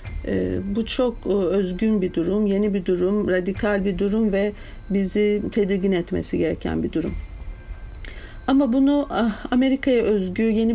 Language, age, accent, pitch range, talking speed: Turkish, 50-69, native, 185-220 Hz, 130 wpm